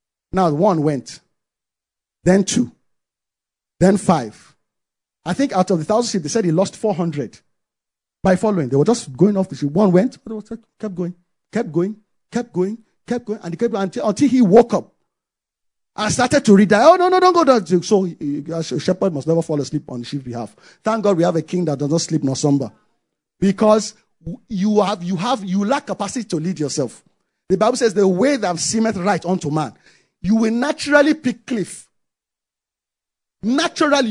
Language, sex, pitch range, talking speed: English, male, 180-260 Hz, 190 wpm